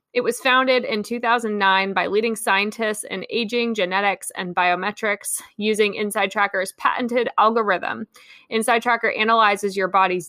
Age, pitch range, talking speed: 20-39, 195-245 Hz, 130 wpm